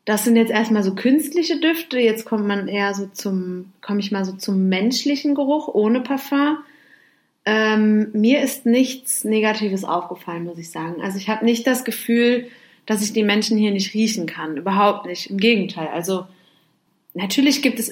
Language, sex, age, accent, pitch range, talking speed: German, female, 30-49, German, 205-245 Hz, 180 wpm